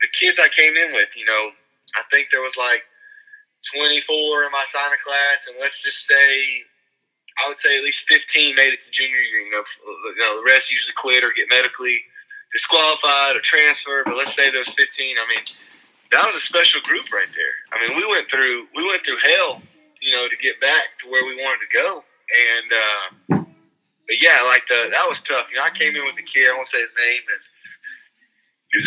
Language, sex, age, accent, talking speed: English, male, 20-39, American, 220 wpm